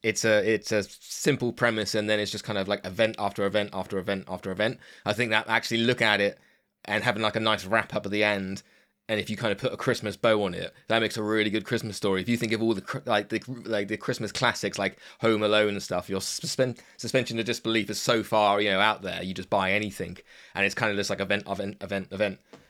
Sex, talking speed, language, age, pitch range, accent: male, 255 wpm, English, 20-39, 100-125 Hz, British